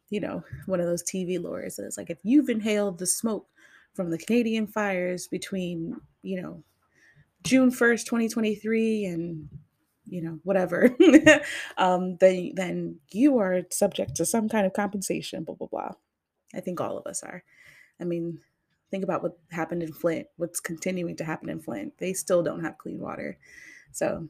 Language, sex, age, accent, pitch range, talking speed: English, female, 20-39, American, 175-220 Hz, 180 wpm